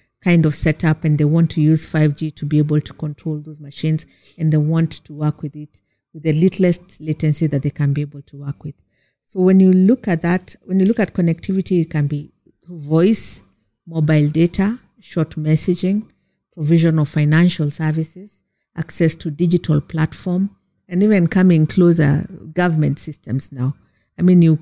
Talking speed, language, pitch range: 180 wpm, English, 150-175 Hz